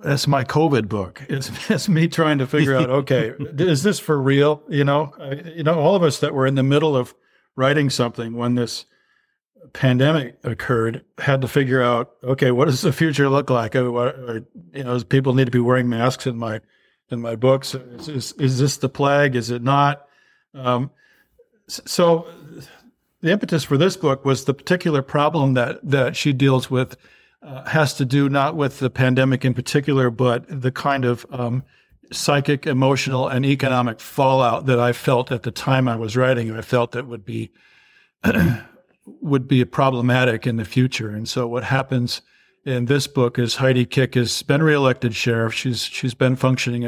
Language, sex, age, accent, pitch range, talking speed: English, male, 50-69, American, 125-145 Hz, 185 wpm